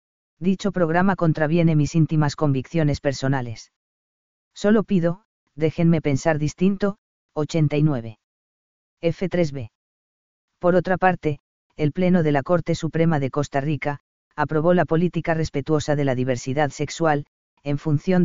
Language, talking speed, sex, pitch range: Spanish, 120 wpm, female, 145-170 Hz